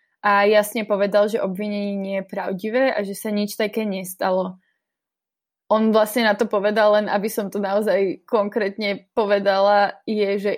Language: Slovak